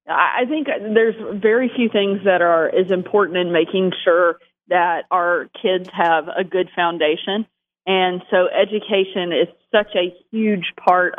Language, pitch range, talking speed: English, 175-195 Hz, 150 wpm